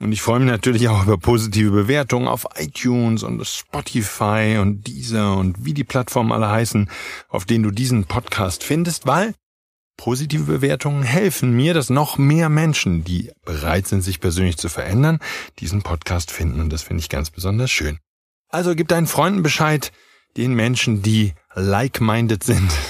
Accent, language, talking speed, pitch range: German, German, 165 wpm, 100-150 Hz